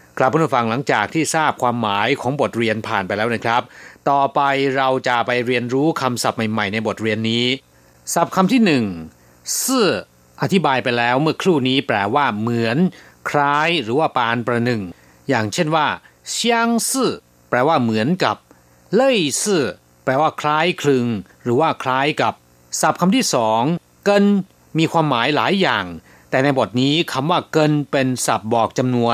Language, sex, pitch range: Thai, male, 110-165 Hz